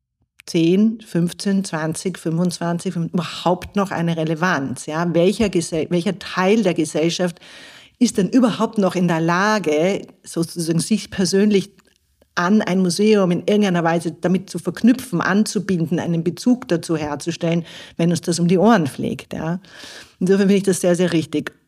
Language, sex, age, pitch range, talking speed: German, female, 50-69, 160-195 Hz, 150 wpm